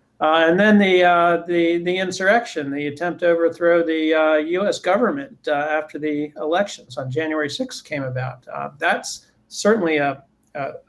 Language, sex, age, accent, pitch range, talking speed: English, male, 50-69, American, 145-190 Hz, 165 wpm